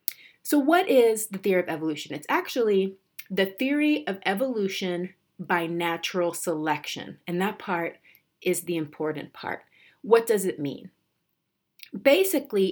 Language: English